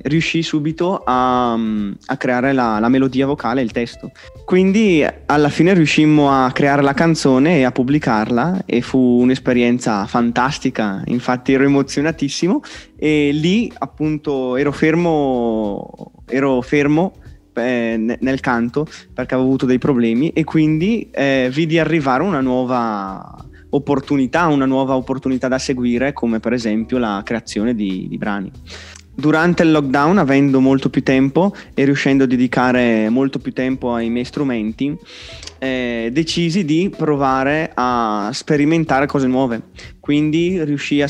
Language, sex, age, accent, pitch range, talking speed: Italian, male, 20-39, native, 120-145 Hz, 135 wpm